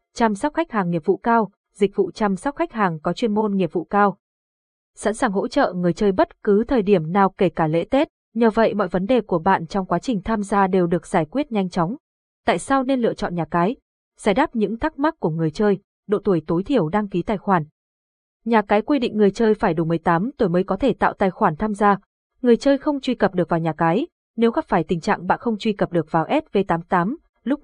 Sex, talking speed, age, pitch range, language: female, 250 wpm, 20-39, 180-235 Hz, Vietnamese